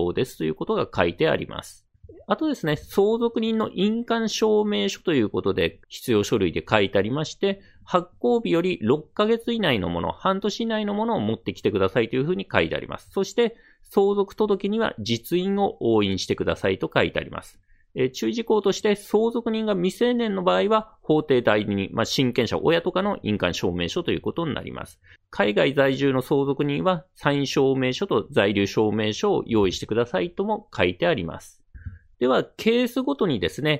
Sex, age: male, 40-59